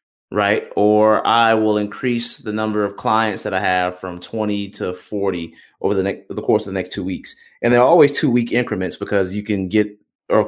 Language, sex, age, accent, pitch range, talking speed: English, male, 20-39, American, 90-110 Hz, 220 wpm